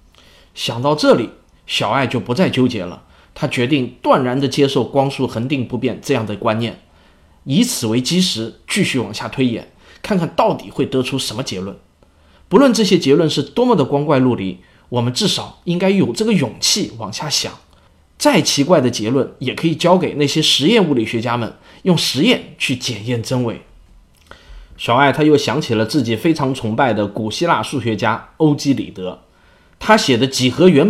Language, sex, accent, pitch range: Chinese, male, native, 110-155 Hz